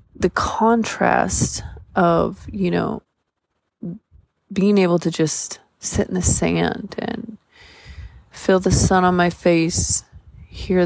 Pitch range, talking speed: 165-195 Hz, 115 wpm